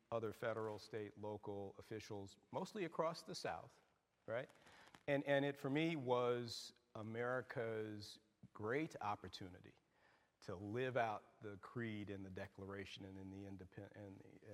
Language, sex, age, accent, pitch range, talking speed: English, male, 50-69, American, 100-120 Hz, 135 wpm